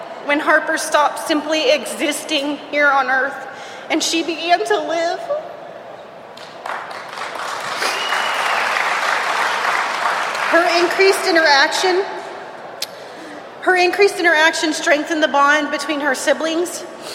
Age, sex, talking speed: 30-49, female, 90 wpm